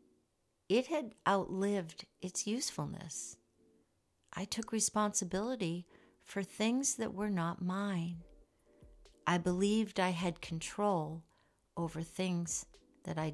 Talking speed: 105 wpm